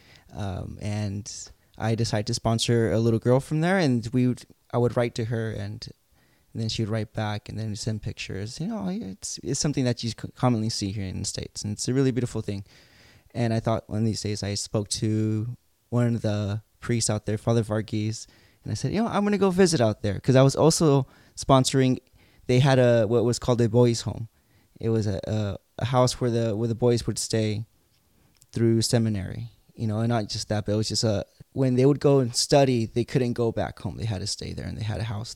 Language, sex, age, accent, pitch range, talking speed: English, male, 20-39, American, 110-130 Hz, 240 wpm